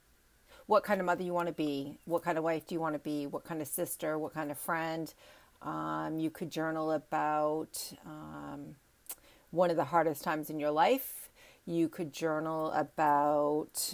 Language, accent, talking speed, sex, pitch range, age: English, American, 185 wpm, female, 160-190 Hz, 40-59